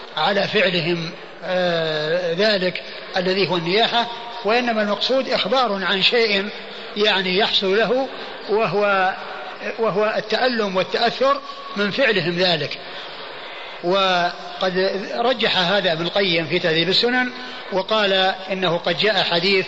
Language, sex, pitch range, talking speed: Arabic, male, 180-220 Hz, 105 wpm